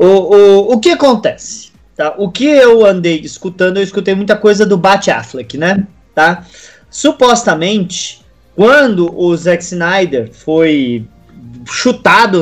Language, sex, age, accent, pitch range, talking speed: Portuguese, male, 20-39, Brazilian, 180-245 Hz, 130 wpm